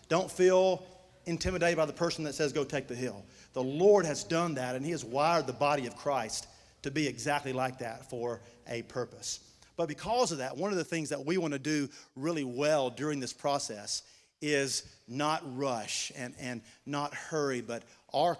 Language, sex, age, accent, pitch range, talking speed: English, male, 50-69, American, 120-145 Hz, 195 wpm